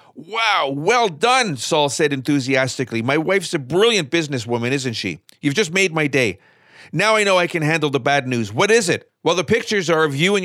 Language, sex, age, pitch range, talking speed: English, male, 50-69, 120-170 Hz, 210 wpm